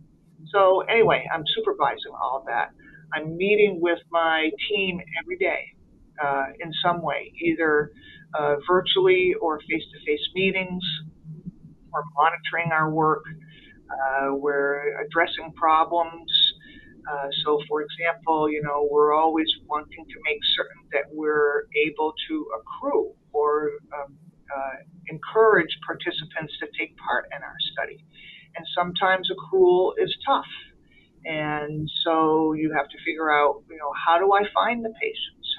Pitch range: 150-185 Hz